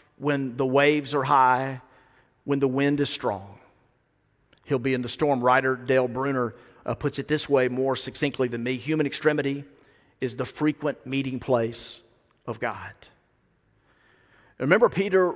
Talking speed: 150 wpm